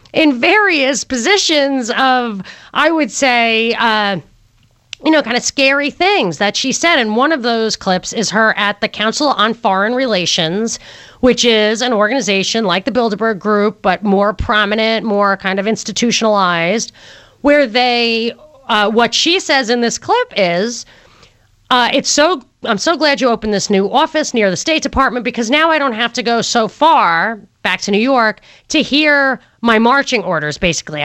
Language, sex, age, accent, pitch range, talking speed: English, female, 30-49, American, 205-270 Hz, 170 wpm